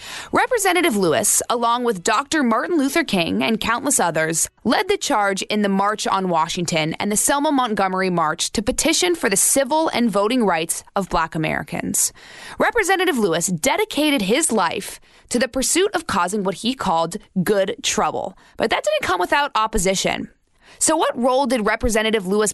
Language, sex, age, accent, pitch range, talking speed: English, female, 20-39, American, 195-280 Hz, 165 wpm